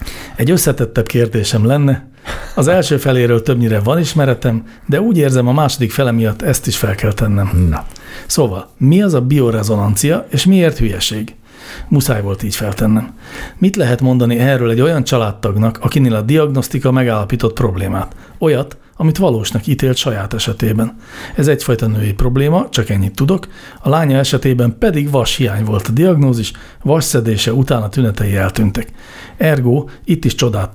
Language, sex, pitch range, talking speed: Hungarian, male, 110-140 Hz, 150 wpm